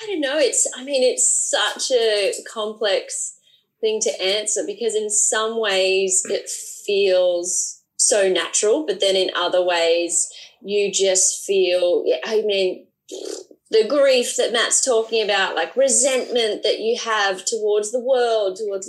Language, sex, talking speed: English, female, 145 wpm